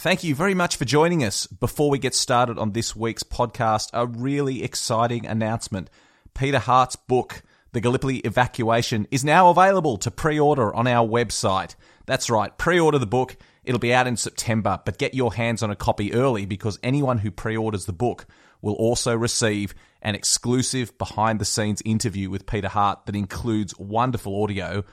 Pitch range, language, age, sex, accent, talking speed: 100-125 Hz, English, 30-49, male, Australian, 170 wpm